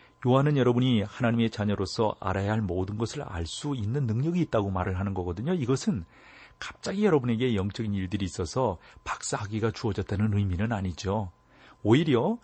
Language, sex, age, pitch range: Korean, male, 40-59, 95-125 Hz